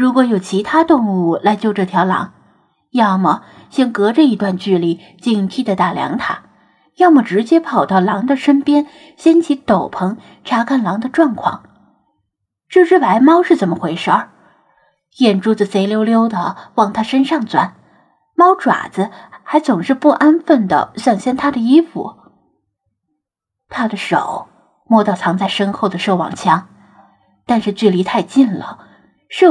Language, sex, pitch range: Chinese, female, 195-275 Hz